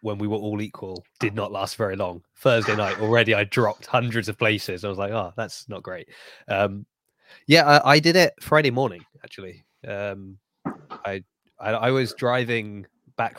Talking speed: 185 wpm